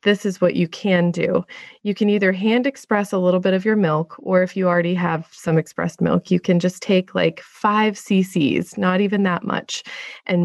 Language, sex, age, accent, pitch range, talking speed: English, female, 20-39, American, 175-205 Hz, 210 wpm